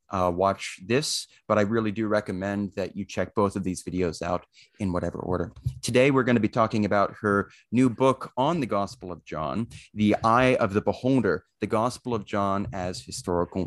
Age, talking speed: 30-49, 200 wpm